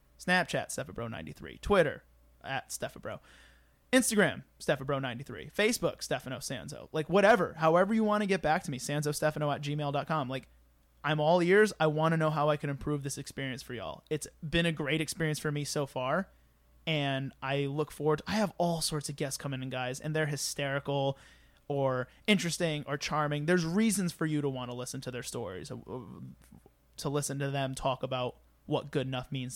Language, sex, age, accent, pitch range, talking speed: English, male, 30-49, American, 130-160 Hz, 180 wpm